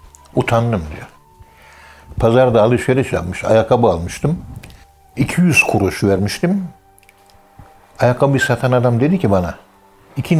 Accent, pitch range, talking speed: native, 95-130 Hz, 100 wpm